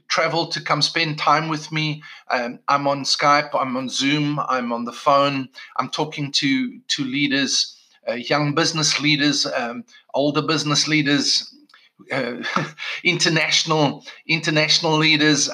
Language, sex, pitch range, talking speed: English, male, 140-160 Hz, 135 wpm